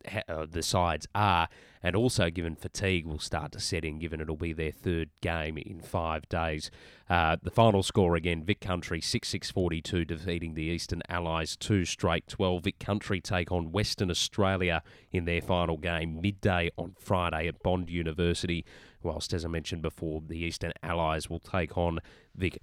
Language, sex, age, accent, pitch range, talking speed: English, male, 30-49, Australian, 85-100 Hz, 170 wpm